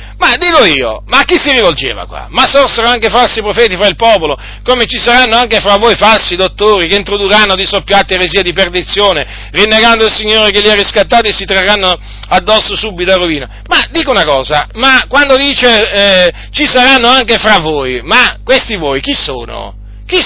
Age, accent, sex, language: 40-59, native, male, Italian